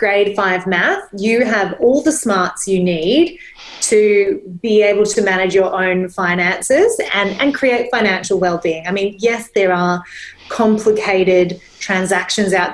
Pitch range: 185-225 Hz